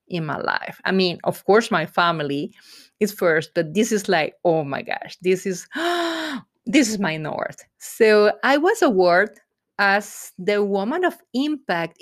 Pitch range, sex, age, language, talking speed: 190-255 Hz, female, 30-49, English, 165 wpm